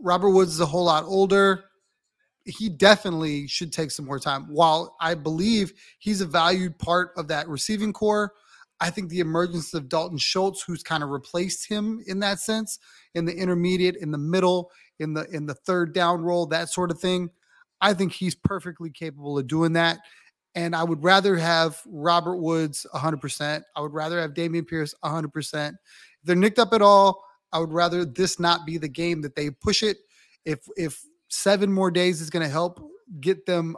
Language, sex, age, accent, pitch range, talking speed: English, male, 30-49, American, 155-190 Hz, 195 wpm